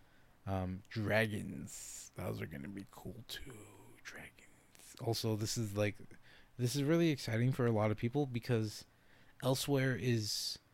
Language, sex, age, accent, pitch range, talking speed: English, male, 20-39, American, 100-125 Hz, 135 wpm